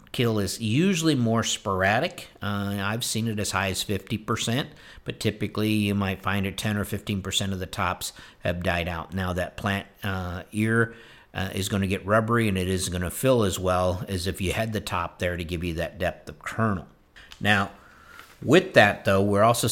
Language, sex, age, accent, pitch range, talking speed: English, male, 50-69, American, 95-115 Hz, 205 wpm